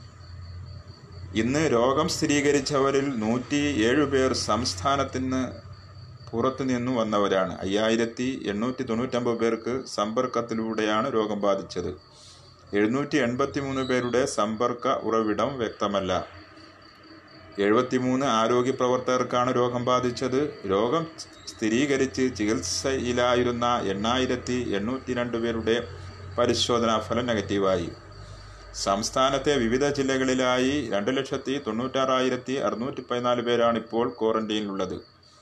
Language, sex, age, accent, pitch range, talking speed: Malayalam, male, 30-49, native, 110-125 Hz, 75 wpm